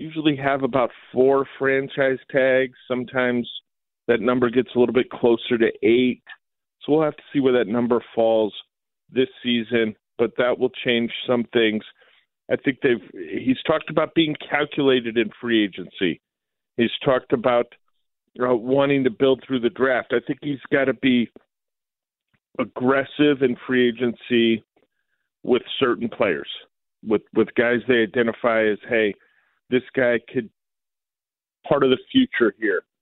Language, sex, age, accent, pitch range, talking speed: English, male, 50-69, American, 115-135 Hz, 155 wpm